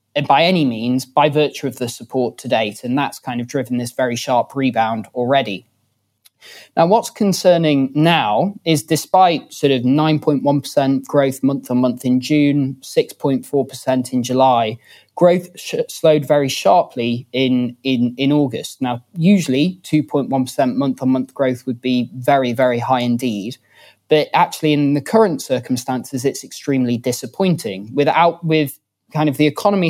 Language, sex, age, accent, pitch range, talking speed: English, male, 20-39, British, 130-160 Hz, 145 wpm